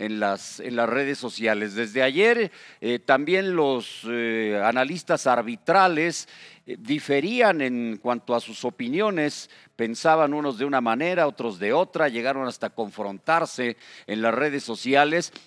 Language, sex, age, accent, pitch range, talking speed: Spanish, male, 50-69, Mexican, 120-165 Hz, 140 wpm